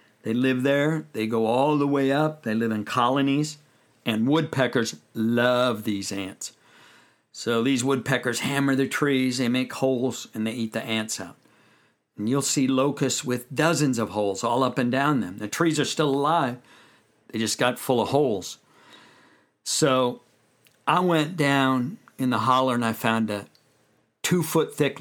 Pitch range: 115-140 Hz